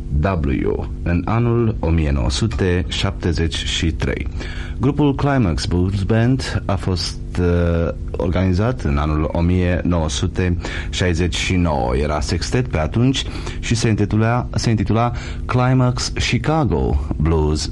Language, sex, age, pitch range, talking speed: Romanian, male, 30-49, 80-95 Hz, 85 wpm